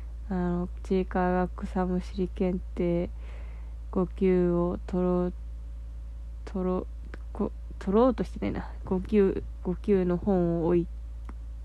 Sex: female